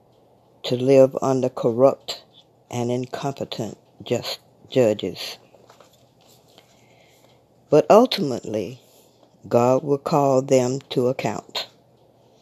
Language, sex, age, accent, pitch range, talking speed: English, female, 60-79, American, 115-140 Hz, 75 wpm